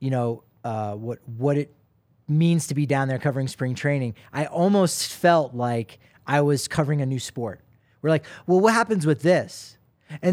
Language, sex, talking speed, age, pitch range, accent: English, male, 185 wpm, 30-49, 125-165 Hz, American